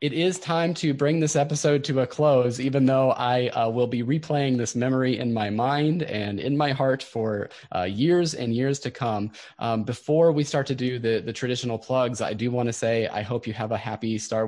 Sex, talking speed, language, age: male, 230 wpm, English, 20-39